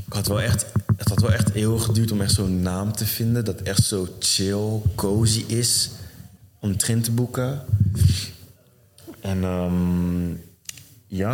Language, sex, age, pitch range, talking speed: Dutch, male, 20-39, 95-110 Hz, 155 wpm